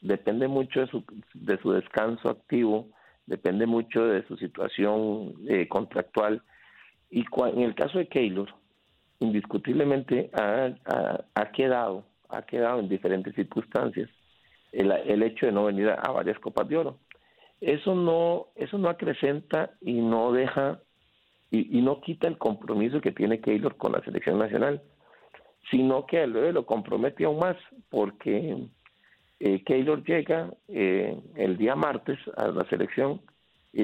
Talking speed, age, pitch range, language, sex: 150 wpm, 50-69, 110-155 Hz, Spanish, male